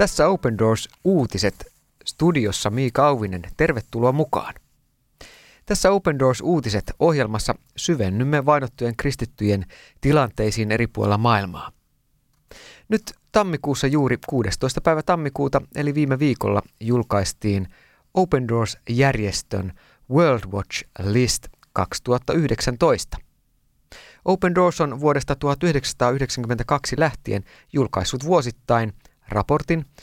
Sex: male